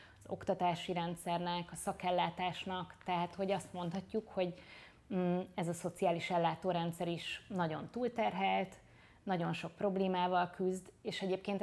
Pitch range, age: 170-190 Hz, 20-39